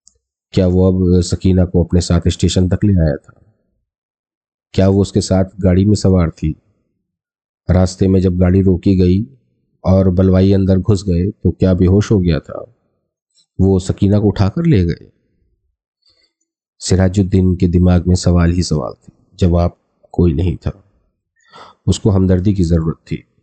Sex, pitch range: male, 85-95 Hz